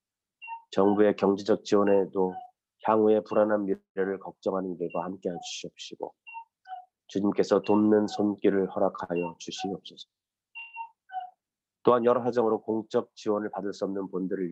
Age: 30-49